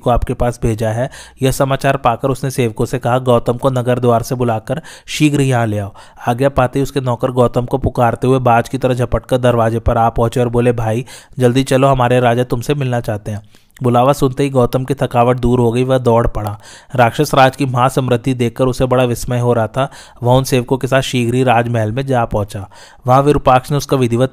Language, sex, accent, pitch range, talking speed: Hindi, male, native, 120-135 Hz, 205 wpm